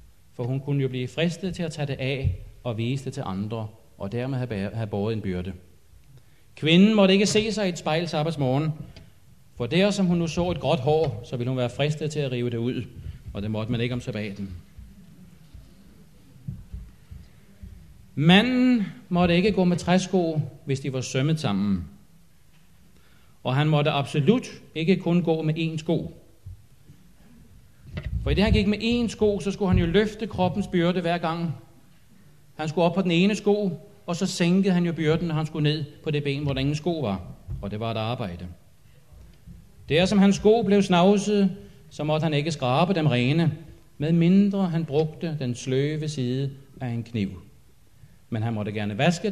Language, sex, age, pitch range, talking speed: Danish, male, 40-59, 120-175 Hz, 185 wpm